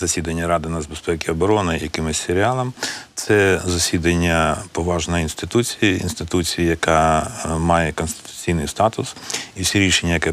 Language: Ukrainian